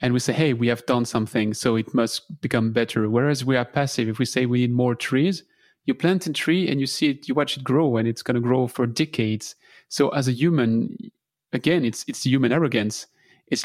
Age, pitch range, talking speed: 30-49, 120-155 Hz, 230 wpm